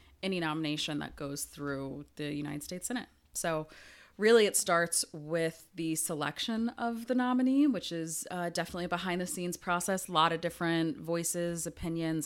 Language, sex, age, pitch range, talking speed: English, female, 30-49, 155-195 Hz, 165 wpm